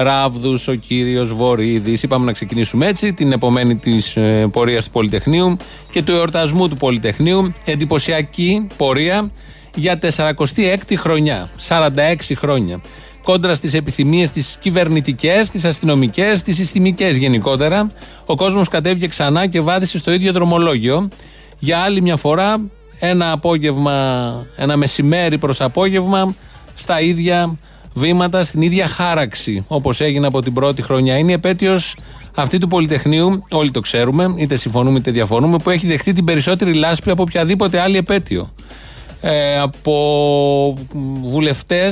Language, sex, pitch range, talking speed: Greek, male, 135-180 Hz, 130 wpm